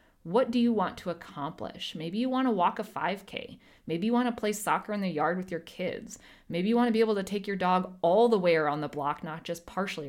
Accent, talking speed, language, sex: American, 260 wpm, English, female